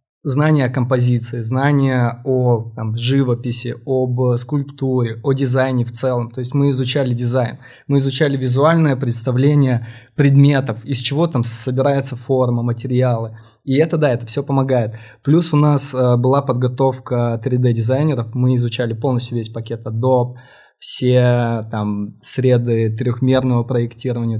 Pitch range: 120-140 Hz